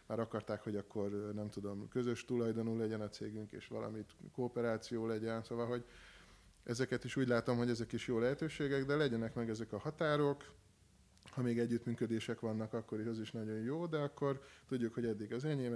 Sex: male